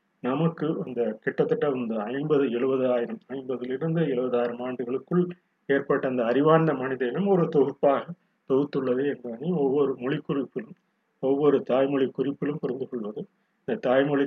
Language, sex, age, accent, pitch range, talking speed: Tamil, male, 30-49, native, 125-170 Hz, 120 wpm